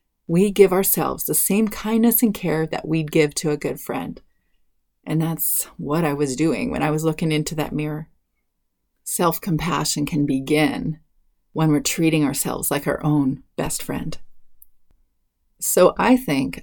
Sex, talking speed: female, 155 wpm